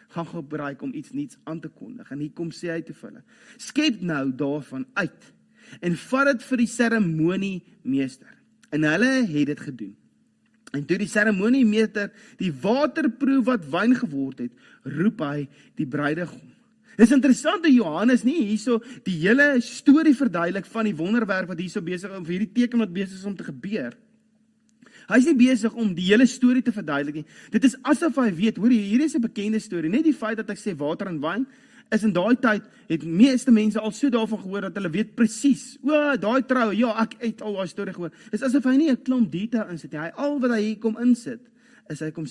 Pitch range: 175-250 Hz